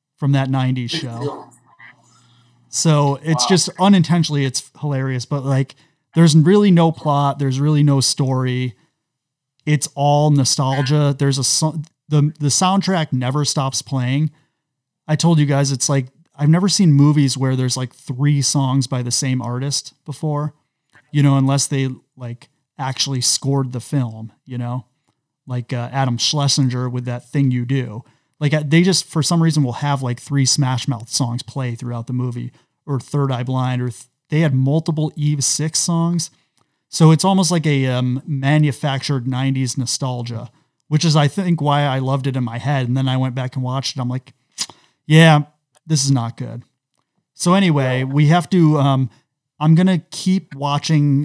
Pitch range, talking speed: 130-150 Hz, 170 wpm